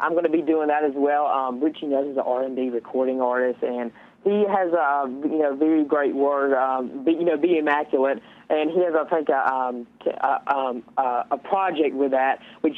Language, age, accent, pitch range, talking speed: English, 20-39, American, 135-165 Hz, 235 wpm